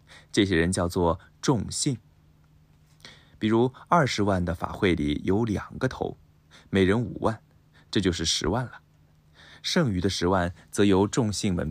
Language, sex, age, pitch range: Japanese, male, 20-39, 80-105 Hz